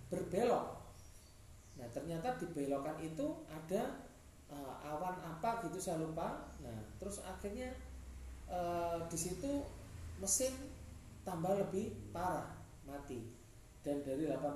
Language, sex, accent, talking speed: Indonesian, male, native, 105 wpm